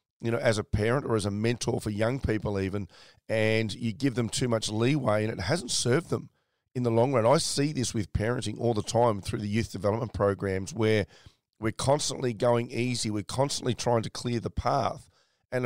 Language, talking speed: English, 210 wpm